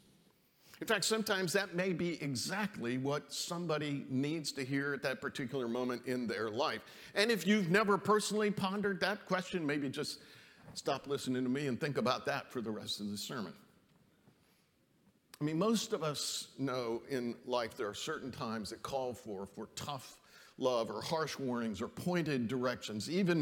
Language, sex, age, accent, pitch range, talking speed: English, male, 50-69, American, 125-185 Hz, 175 wpm